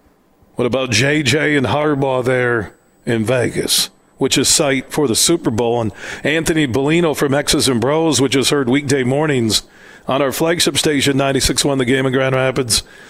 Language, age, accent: English, 40-59, American